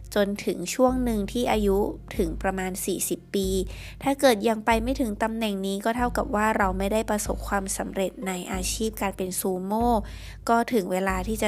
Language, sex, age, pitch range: Thai, female, 20-39, 190-240 Hz